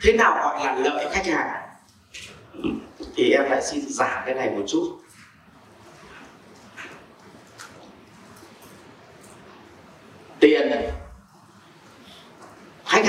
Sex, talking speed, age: male, 85 wpm, 30-49